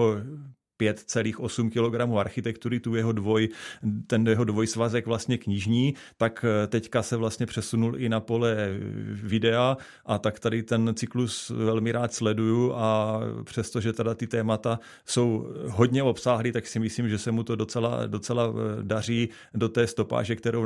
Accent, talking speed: native, 150 wpm